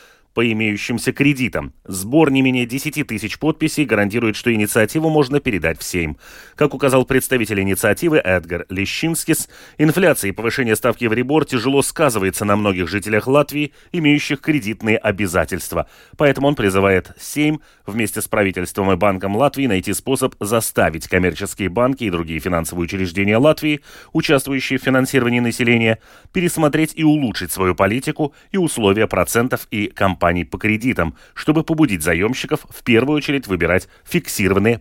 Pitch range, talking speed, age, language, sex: 100-145 Hz, 140 wpm, 30-49, Russian, male